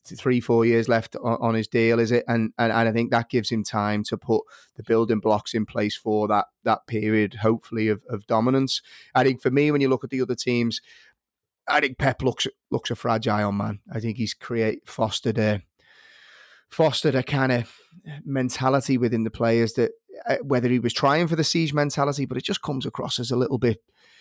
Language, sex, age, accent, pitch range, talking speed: English, male, 30-49, British, 115-135 Hz, 210 wpm